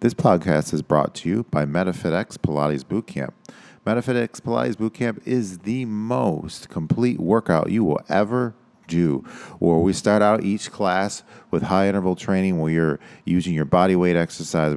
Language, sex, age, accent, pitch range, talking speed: English, male, 40-59, American, 85-100 Hz, 160 wpm